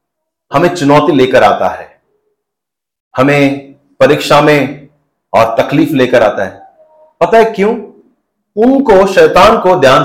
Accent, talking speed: native, 120 wpm